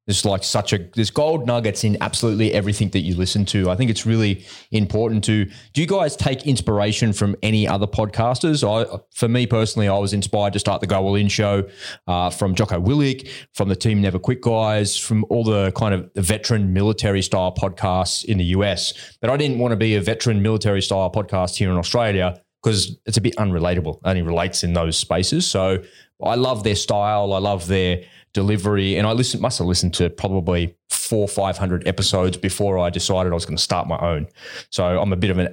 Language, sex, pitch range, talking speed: English, male, 95-110 Hz, 210 wpm